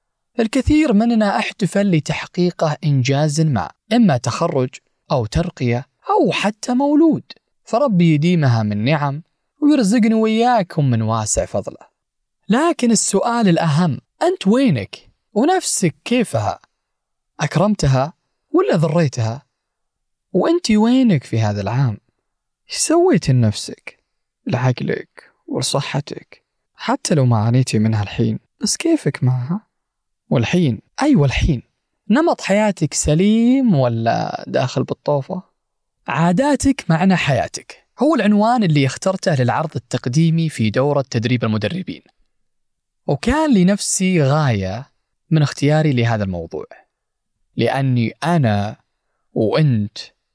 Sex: male